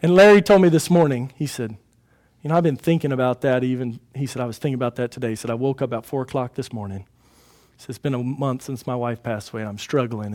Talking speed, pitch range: 280 wpm, 115-150 Hz